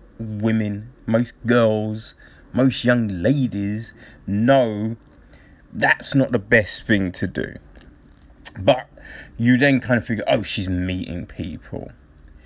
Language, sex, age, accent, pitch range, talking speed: English, male, 30-49, British, 85-135 Hz, 115 wpm